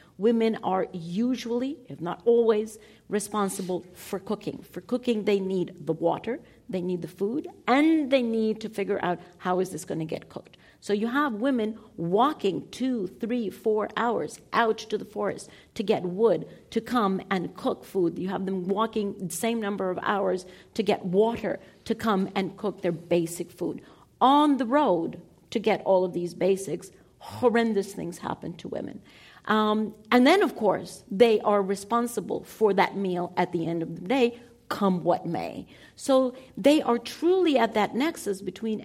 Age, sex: 50-69, female